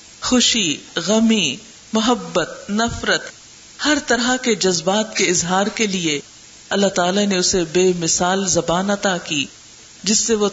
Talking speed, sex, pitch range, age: 135 wpm, female, 180-235 Hz, 50-69